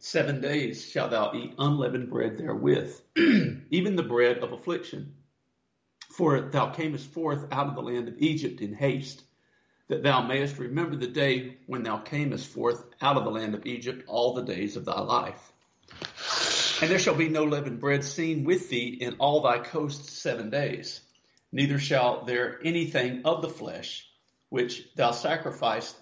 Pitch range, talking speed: 125-150 Hz, 170 wpm